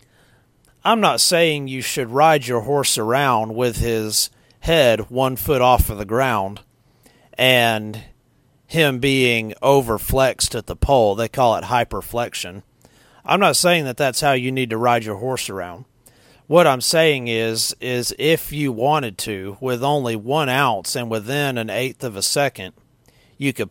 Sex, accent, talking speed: male, American, 160 wpm